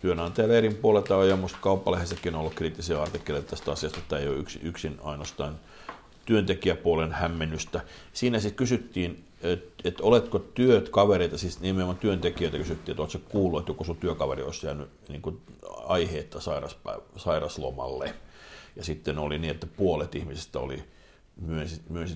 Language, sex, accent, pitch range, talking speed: Finnish, male, native, 75-90 Hz, 145 wpm